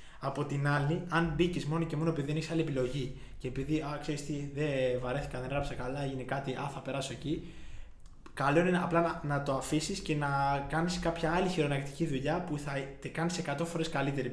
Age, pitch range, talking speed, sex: 20-39, 130-160 Hz, 200 wpm, male